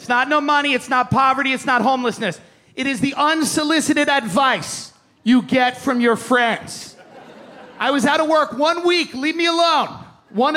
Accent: American